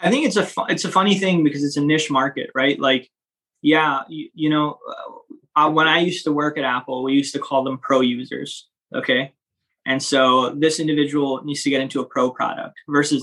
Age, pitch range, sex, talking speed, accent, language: 20-39, 130-155 Hz, male, 220 wpm, American, English